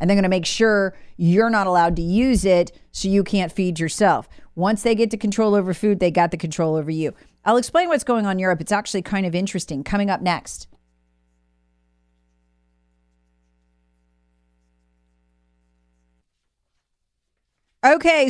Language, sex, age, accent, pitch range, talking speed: English, female, 40-59, American, 170-230 Hz, 150 wpm